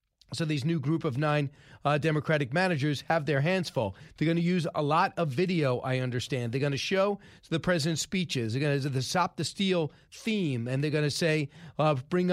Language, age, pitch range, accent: English, 40-59, 145-180 Hz, American